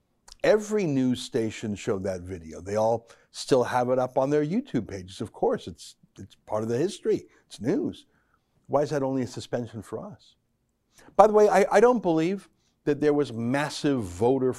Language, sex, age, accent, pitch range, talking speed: English, male, 60-79, American, 120-160 Hz, 190 wpm